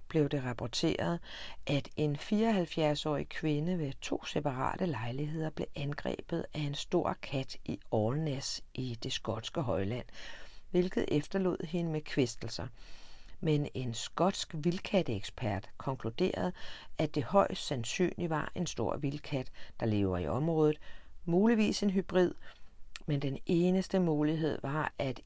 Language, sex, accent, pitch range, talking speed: Danish, female, native, 120-170 Hz, 130 wpm